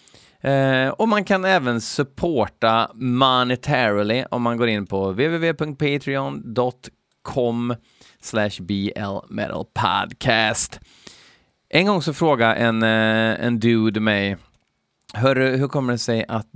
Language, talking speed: Swedish, 100 wpm